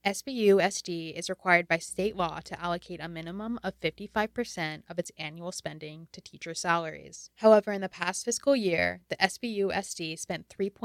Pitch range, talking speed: 165-195 Hz, 155 wpm